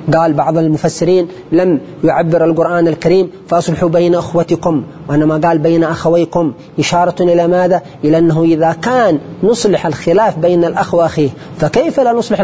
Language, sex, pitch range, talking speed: Arabic, male, 155-205 Hz, 145 wpm